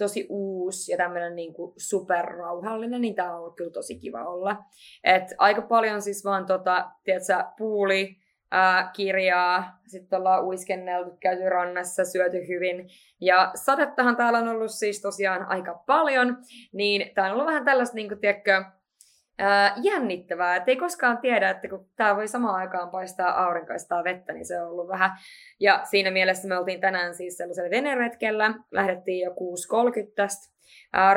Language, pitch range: Finnish, 180-215 Hz